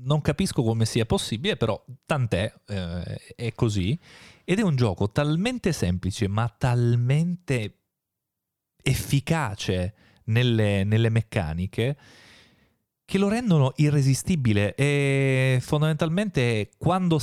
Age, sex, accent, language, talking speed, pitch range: 30-49, male, native, Italian, 100 wpm, 100-140 Hz